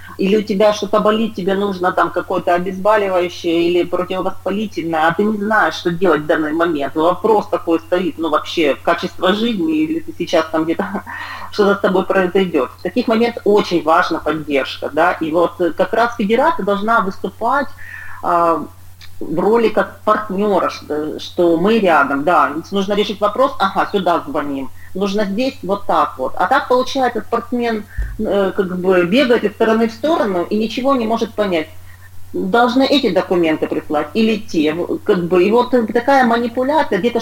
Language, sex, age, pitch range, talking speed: Ukrainian, female, 40-59, 175-230 Hz, 165 wpm